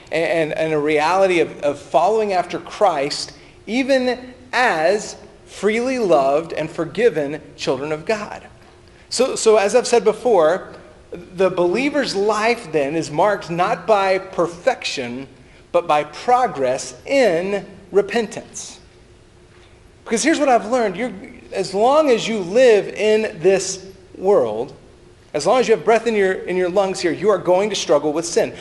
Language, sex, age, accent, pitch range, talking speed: English, male, 40-59, American, 175-250 Hz, 145 wpm